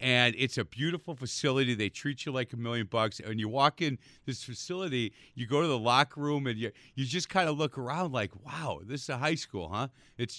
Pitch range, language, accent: 115-145 Hz, English, American